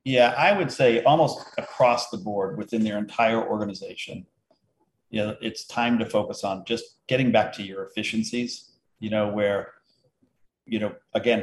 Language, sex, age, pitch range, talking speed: English, male, 50-69, 105-120 Hz, 165 wpm